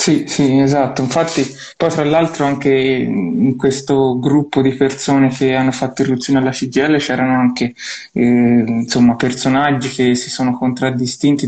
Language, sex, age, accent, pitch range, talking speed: Italian, male, 20-39, native, 125-135 Hz, 145 wpm